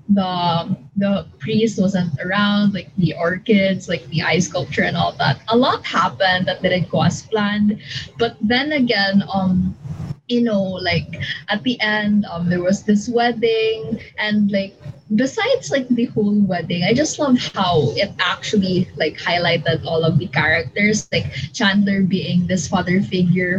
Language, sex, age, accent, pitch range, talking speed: Filipino, female, 20-39, native, 170-205 Hz, 160 wpm